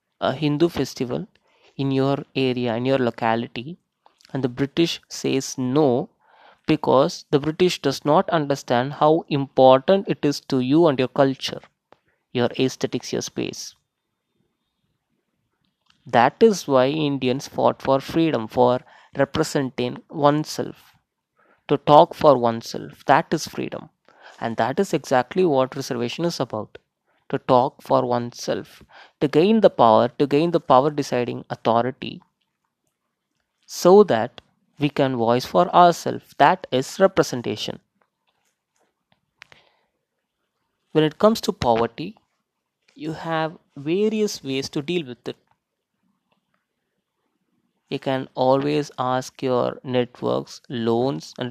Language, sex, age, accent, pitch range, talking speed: Tamil, male, 20-39, native, 125-160 Hz, 120 wpm